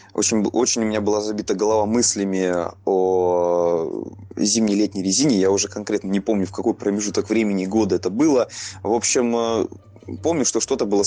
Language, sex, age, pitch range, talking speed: Russian, male, 20-39, 95-115 Hz, 155 wpm